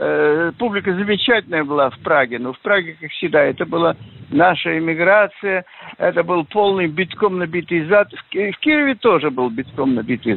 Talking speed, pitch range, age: 150 wpm, 135-210 Hz, 50-69